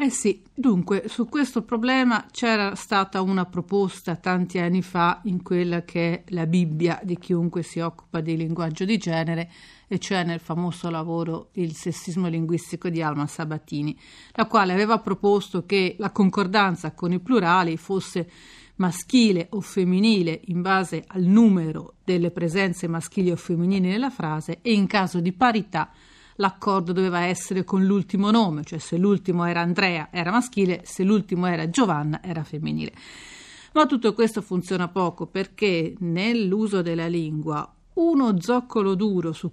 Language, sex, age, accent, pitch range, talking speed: Italian, female, 40-59, native, 170-200 Hz, 155 wpm